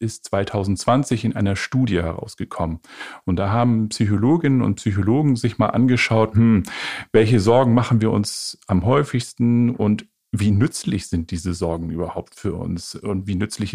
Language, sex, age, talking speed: German, male, 50-69, 155 wpm